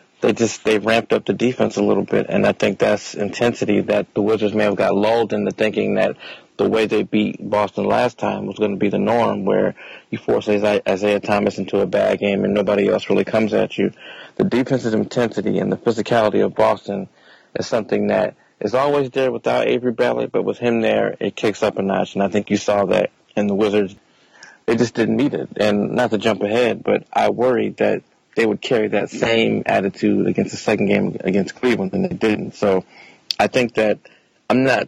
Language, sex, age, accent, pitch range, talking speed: English, male, 30-49, American, 100-115 Hz, 215 wpm